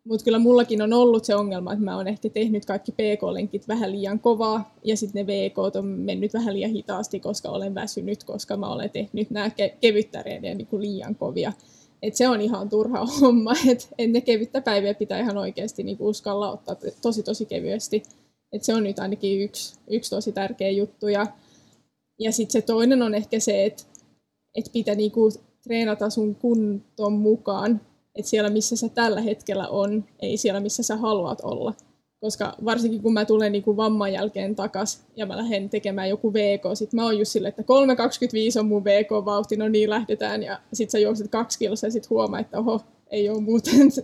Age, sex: 20-39, female